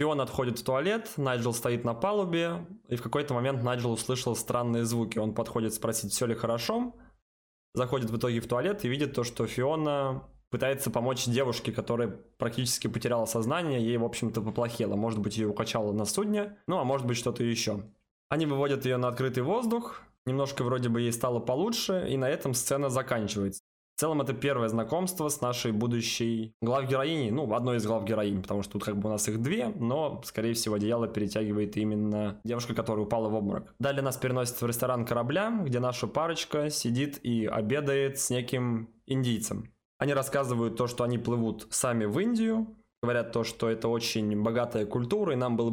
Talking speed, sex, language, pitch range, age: 185 wpm, male, Russian, 115-135 Hz, 20-39